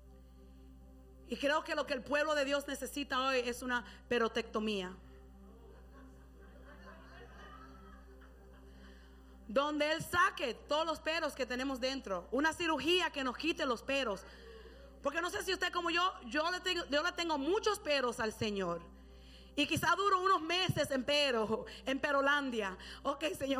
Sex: female